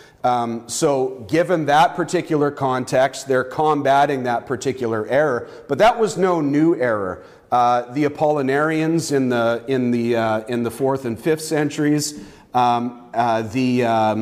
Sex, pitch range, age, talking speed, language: male, 125-155 Hz, 40-59, 150 wpm, English